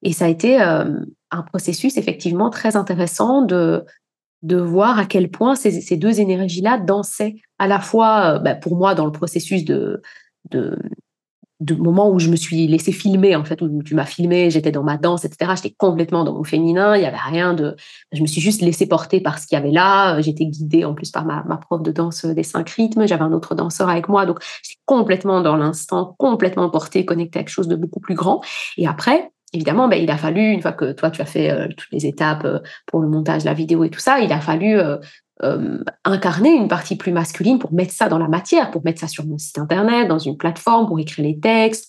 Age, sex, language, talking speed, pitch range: 20-39, female, French, 240 wpm, 160-200 Hz